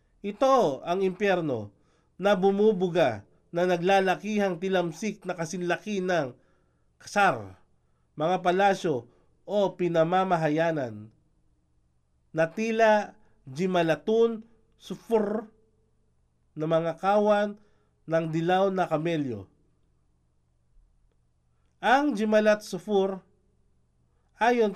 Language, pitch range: Filipino, 120-200 Hz